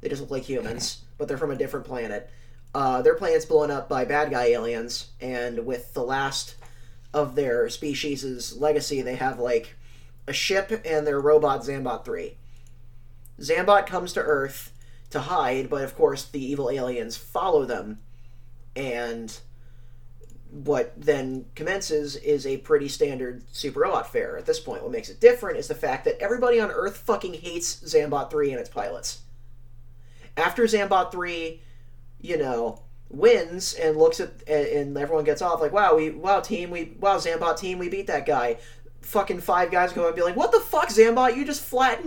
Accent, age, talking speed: American, 20-39, 175 wpm